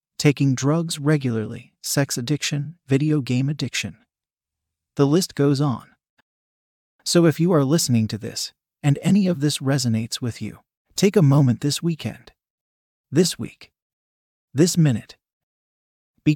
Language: English